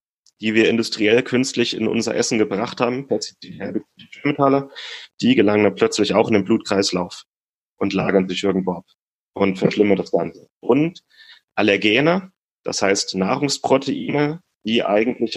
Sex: male